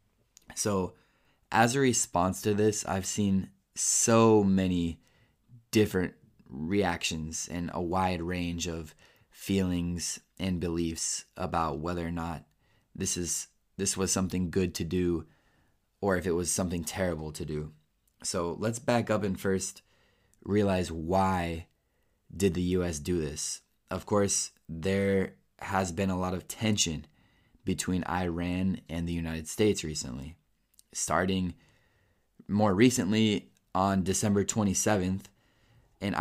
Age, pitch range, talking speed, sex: 20-39, 85-105 Hz, 125 wpm, male